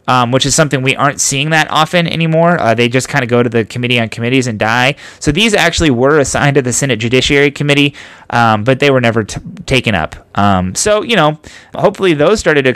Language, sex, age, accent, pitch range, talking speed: English, male, 20-39, American, 110-140 Hz, 225 wpm